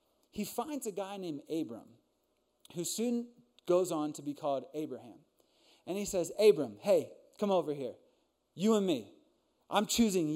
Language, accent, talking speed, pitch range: English, American, 155 wpm, 150-205 Hz